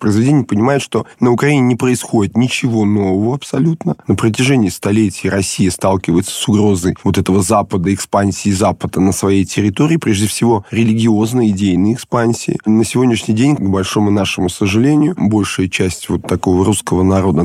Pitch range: 95-115 Hz